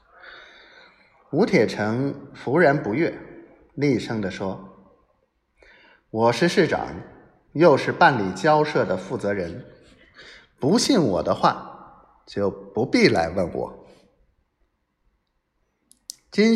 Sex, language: male, Chinese